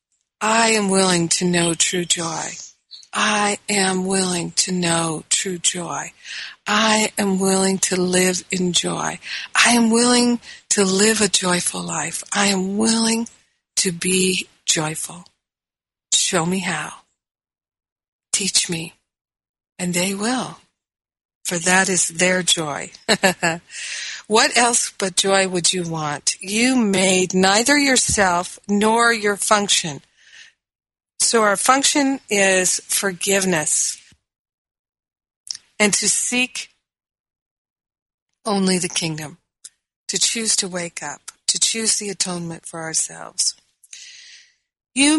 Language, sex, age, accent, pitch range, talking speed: English, female, 60-79, American, 180-215 Hz, 115 wpm